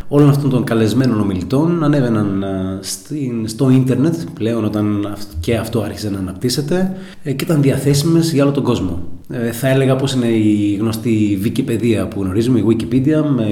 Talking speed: 150 wpm